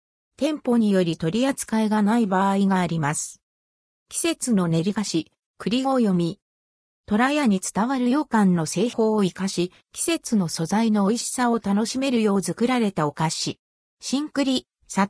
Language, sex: Japanese, female